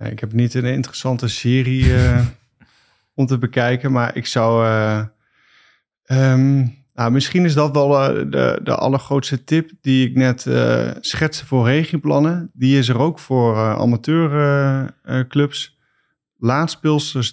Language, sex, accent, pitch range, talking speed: Dutch, male, Dutch, 115-135 Hz, 145 wpm